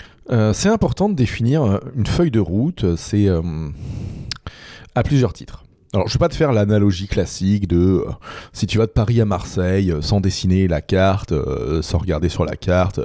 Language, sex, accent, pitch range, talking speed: French, male, French, 90-115 Hz, 195 wpm